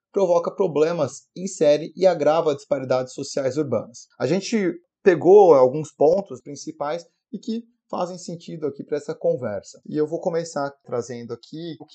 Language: Portuguese